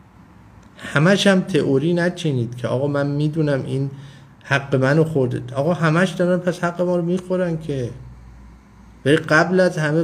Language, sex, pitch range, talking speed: Persian, male, 120-155 Hz, 155 wpm